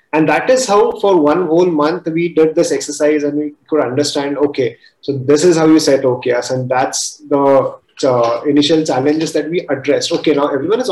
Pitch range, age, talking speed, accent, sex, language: 135-170 Hz, 30-49, 205 wpm, Indian, male, English